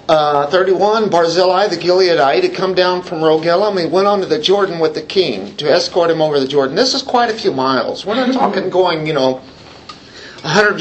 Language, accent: English, American